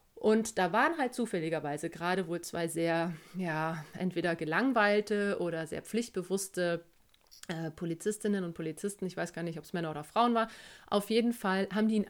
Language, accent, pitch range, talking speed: German, German, 175-215 Hz, 175 wpm